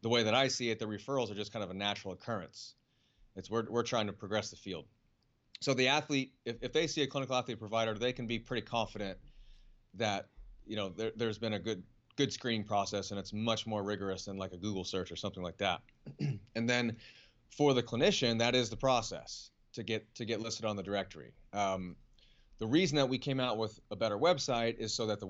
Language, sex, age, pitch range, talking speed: English, male, 30-49, 105-125 Hz, 230 wpm